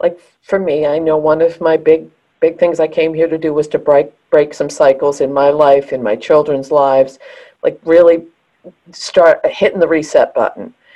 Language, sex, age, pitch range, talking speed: English, female, 50-69, 135-170 Hz, 195 wpm